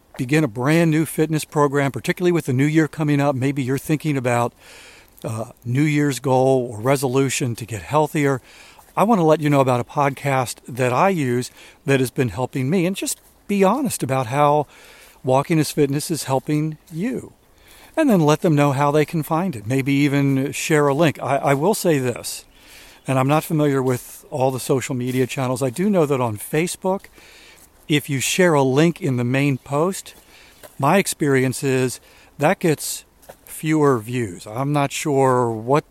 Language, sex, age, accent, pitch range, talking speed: English, male, 50-69, American, 130-155 Hz, 185 wpm